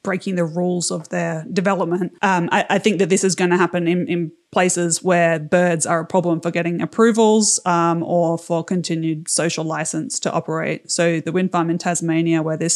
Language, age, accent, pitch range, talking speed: English, 20-39, Australian, 165-185 Hz, 200 wpm